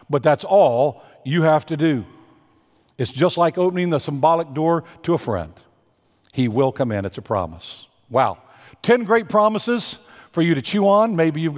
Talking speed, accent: 180 wpm, American